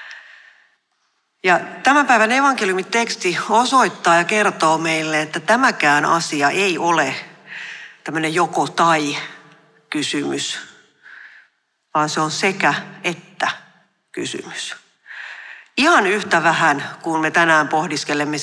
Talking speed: 100 wpm